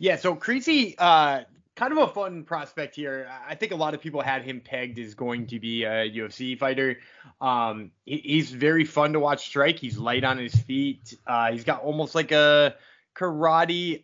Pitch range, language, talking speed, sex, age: 120-145 Hz, English, 190 wpm, male, 20-39